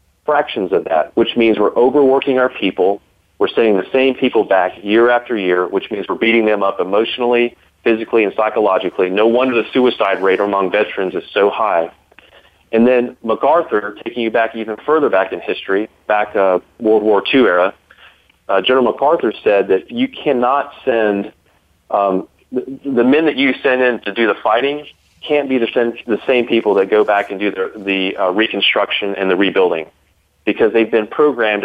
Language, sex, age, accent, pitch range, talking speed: English, male, 30-49, American, 100-135 Hz, 185 wpm